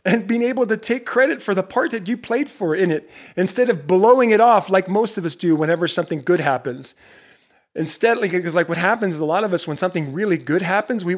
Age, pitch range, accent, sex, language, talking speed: 30-49, 150-205 Hz, American, male, English, 245 wpm